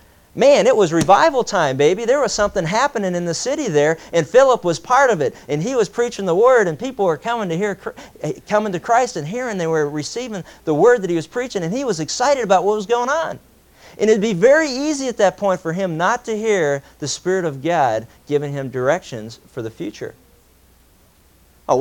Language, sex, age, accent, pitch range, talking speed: English, male, 40-59, American, 140-215 Hz, 220 wpm